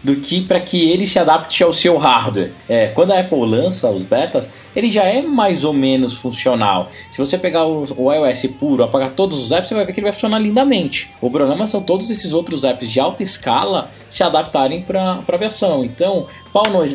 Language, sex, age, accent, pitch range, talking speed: Portuguese, male, 20-39, Brazilian, 125-185 Hz, 210 wpm